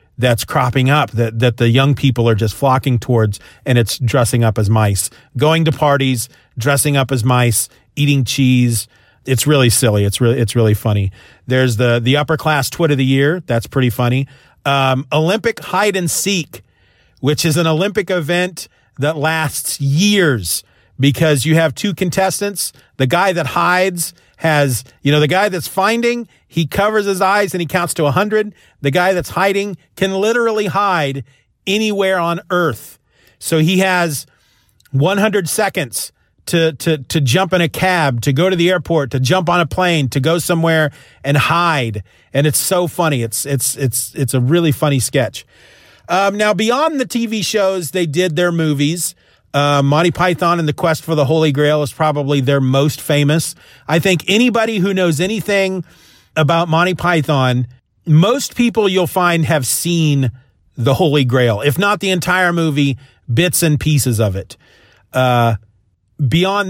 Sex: male